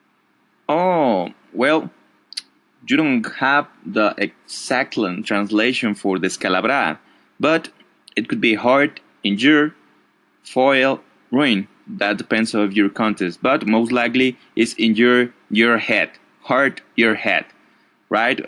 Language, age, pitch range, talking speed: English, 20-39, 100-130 Hz, 115 wpm